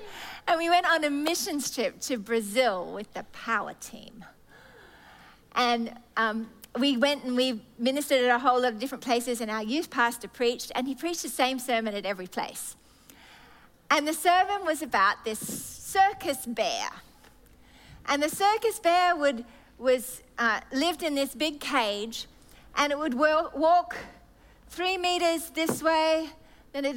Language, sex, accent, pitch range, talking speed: English, female, Australian, 245-325 Hz, 160 wpm